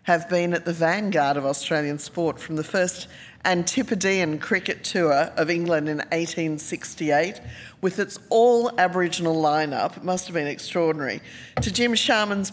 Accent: Australian